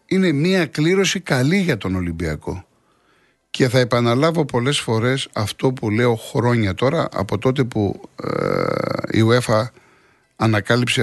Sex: male